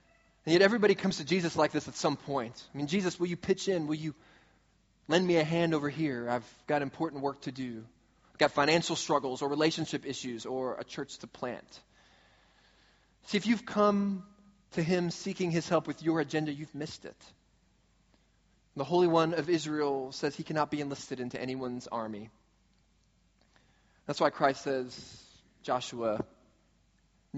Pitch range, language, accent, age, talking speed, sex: 125-170 Hz, English, American, 20-39, 170 wpm, male